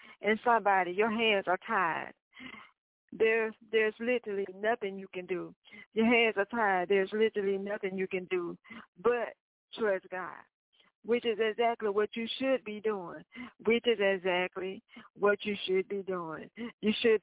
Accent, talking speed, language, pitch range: American, 150 wpm, English, 195-240 Hz